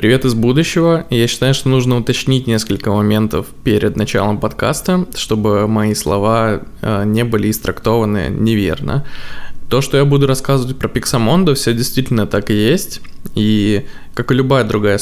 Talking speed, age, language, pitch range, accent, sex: 150 wpm, 20-39, Russian, 105-135 Hz, native, male